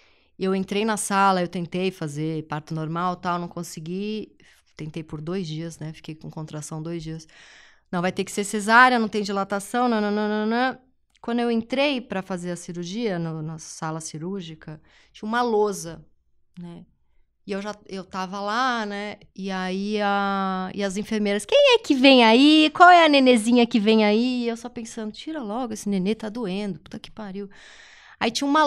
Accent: Brazilian